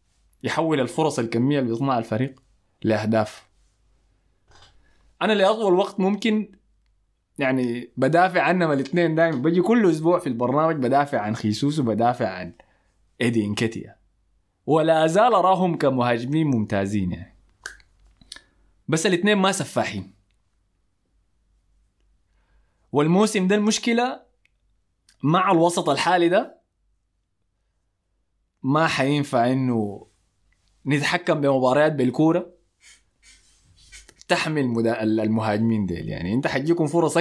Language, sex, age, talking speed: Arabic, male, 20-39, 90 wpm